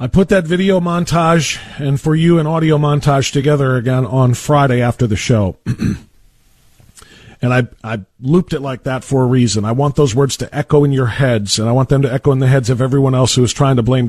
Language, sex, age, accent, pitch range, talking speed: English, male, 40-59, American, 125-180 Hz, 230 wpm